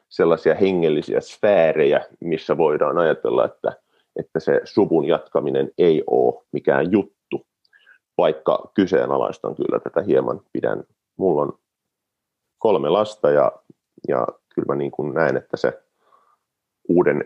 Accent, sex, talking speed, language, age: native, male, 120 wpm, Finnish, 30-49